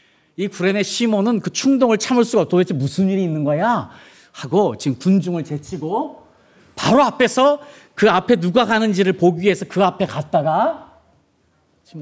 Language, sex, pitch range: Korean, male, 130-215 Hz